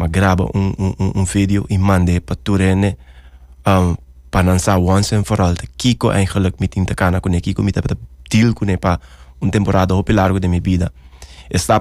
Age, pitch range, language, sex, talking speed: 20-39, 90-110 Hz, English, male, 135 wpm